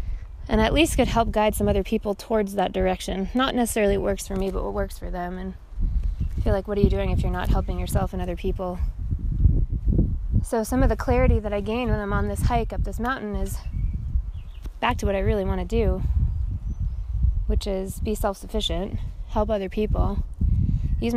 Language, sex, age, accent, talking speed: English, female, 20-39, American, 200 wpm